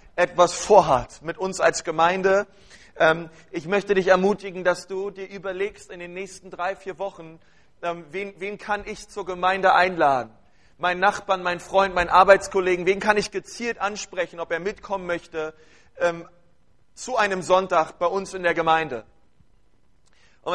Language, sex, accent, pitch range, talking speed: German, male, German, 165-195 Hz, 150 wpm